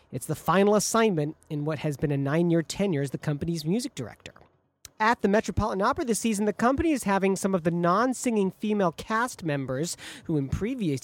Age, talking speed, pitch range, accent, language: 40-59, 195 wpm, 150-190 Hz, American, English